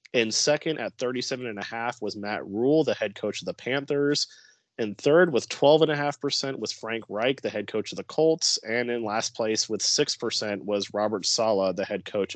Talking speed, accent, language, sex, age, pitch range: 185 wpm, American, English, male, 30-49, 105-125 Hz